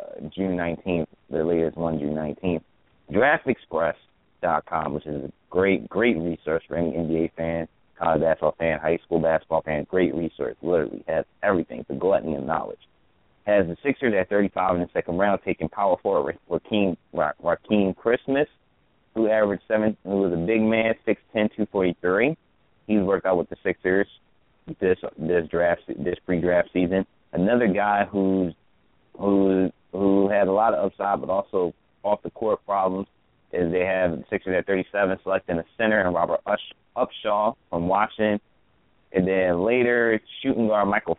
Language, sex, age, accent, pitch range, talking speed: English, male, 30-49, American, 85-105 Hz, 165 wpm